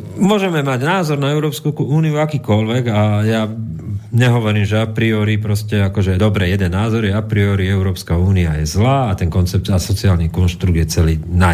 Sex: male